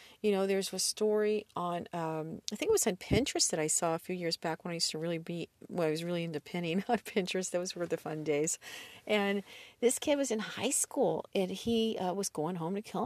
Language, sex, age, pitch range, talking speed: English, female, 40-59, 165-210 Hz, 250 wpm